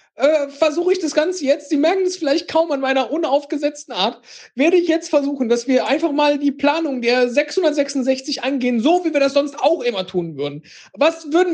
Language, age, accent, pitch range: German, 40-59, German, 200-265 Hz